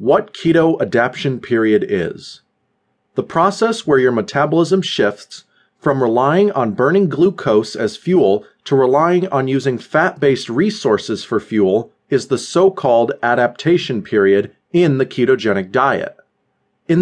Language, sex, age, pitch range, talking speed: English, male, 30-49, 120-190 Hz, 125 wpm